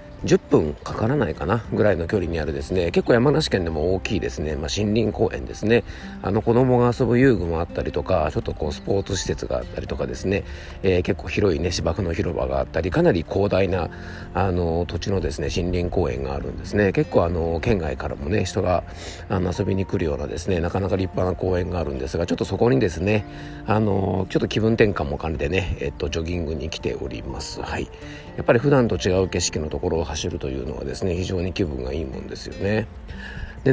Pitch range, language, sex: 85-105 Hz, Japanese, male